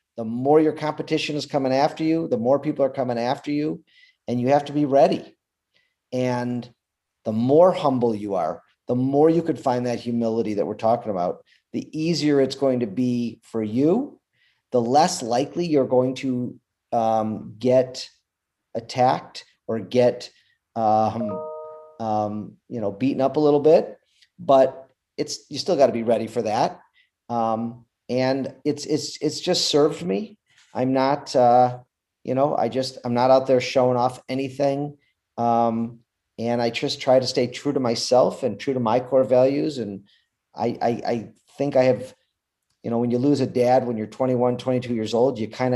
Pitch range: 115-140 Hz